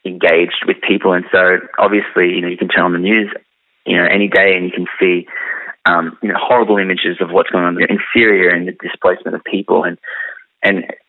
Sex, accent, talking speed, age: male, Australian, 225 wpm, 20-39